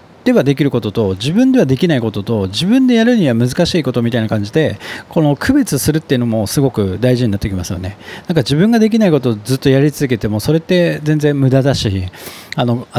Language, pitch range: Japanese, 115-170 Hz